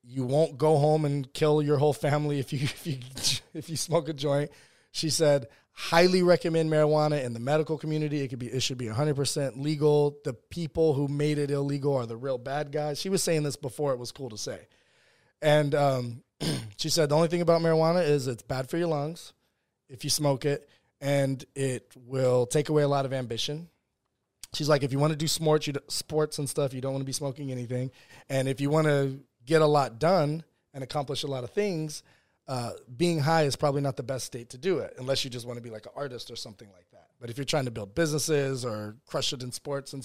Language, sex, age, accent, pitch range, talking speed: English, male, 20-39, American, 130-155 Hz, 230 wpm